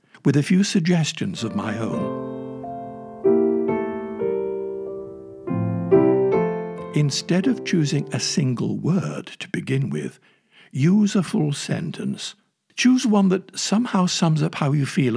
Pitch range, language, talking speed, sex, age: 120-180 Hz, English, 115 wpm, male, 60-79